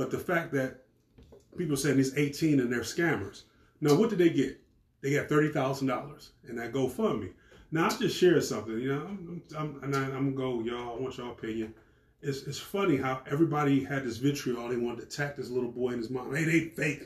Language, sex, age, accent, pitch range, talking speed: English, male, 30-49, American, 130-170 Hz, 230 wpm